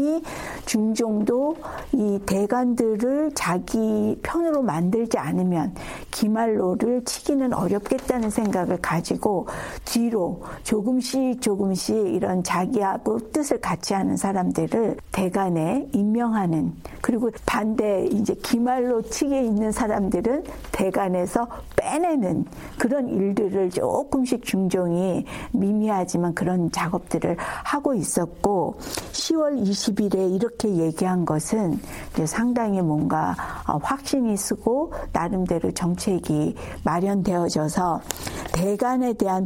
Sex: female